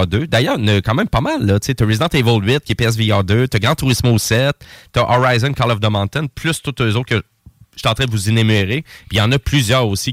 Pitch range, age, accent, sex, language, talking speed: 105-135 Hz, 30-49, Canadian, male, French, 260 wpm